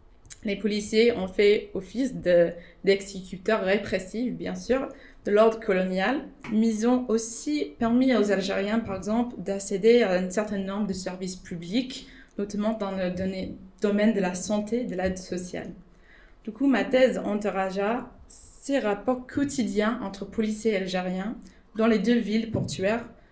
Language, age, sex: English, 20-39, female